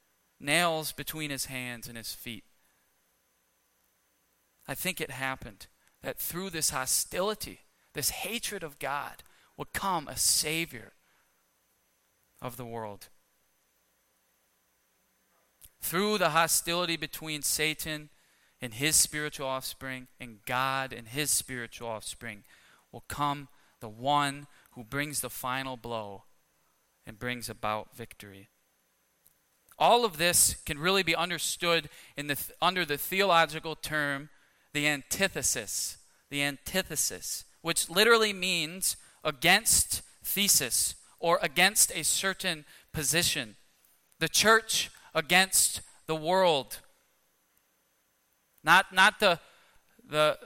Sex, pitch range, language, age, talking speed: male, 115-165 Hz, English, 20-39, 105 wpm